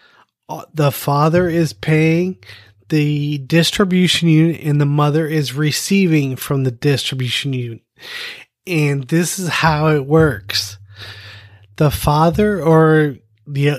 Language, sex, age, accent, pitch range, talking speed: English, male, 30-49, American, 140-165 Hz, 115 wpm